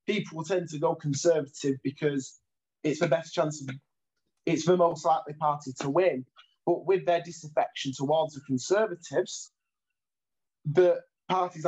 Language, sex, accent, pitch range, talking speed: English, male, British, 150-180 Hz, 135 wpm